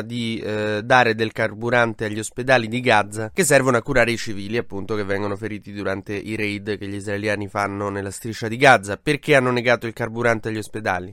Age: 20-39